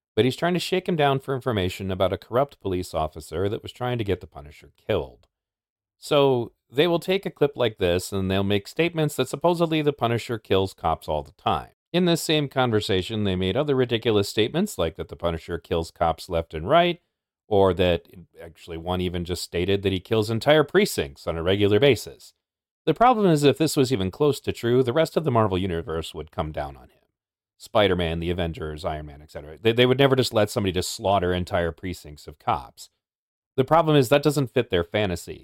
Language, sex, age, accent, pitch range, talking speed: English, male, 40-59, American, 90-145 Hz, 210 wpm